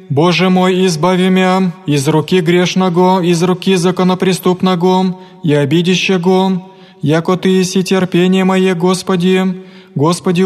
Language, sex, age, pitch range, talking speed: Greek, male, 20-39, 185-190 Hz, 110 wpm